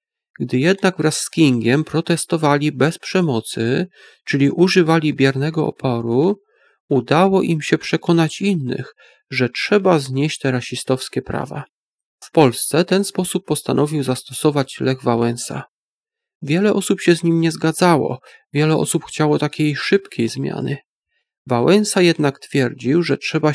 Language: Polish